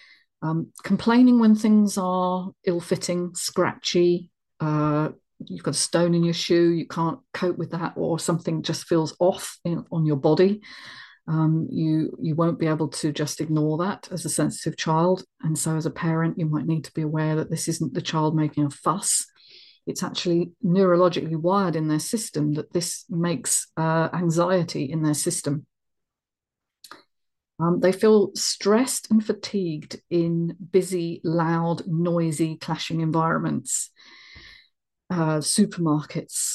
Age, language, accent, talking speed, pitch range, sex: 40-59, English, British, 150 wpm, 155-185 Hz, female